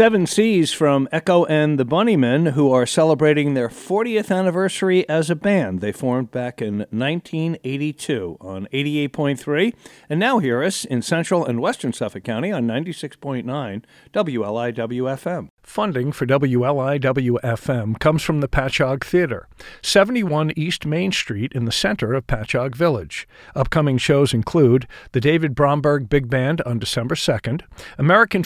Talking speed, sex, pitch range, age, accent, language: 135 wpm, male, 125-165 Hz, 50-69, American, English